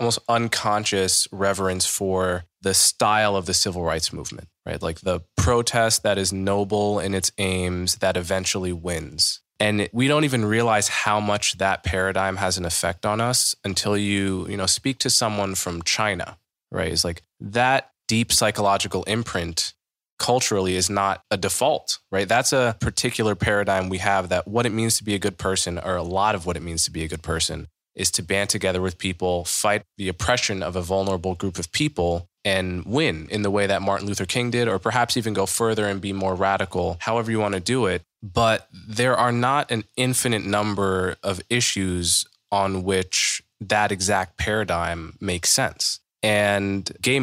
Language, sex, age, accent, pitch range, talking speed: English, male, 20-39, American, 95-110 Hz, 185 wpm